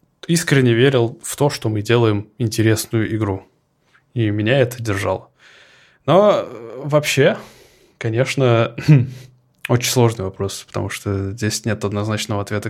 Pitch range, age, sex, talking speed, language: 105-125 Hz, 20-39, male, 120 wpm, Russian